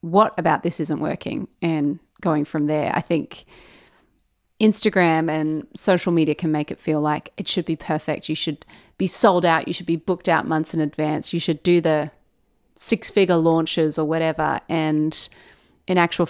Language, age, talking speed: English, 30-49, 180 wpm